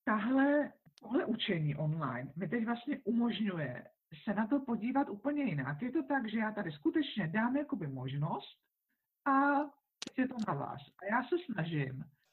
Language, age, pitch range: Czech, 50-69, 165-235 Hz